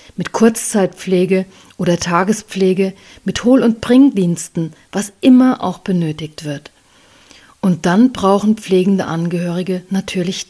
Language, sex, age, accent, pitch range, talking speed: German, female, 40-59, German, 180-225 Hz, 110 wpm